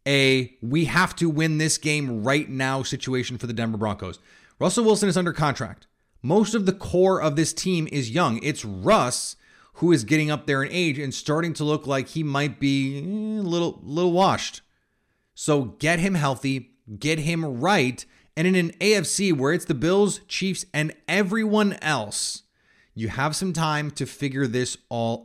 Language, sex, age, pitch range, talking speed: English, male, 30-49, 125-170 Hz, 165 wpm